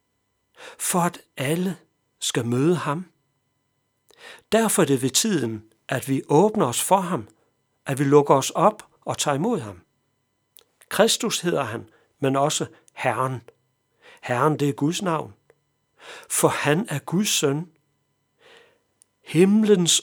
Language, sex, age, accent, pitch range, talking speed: Danish, male, 60-79, native, 125-175 Hz, 130 wpm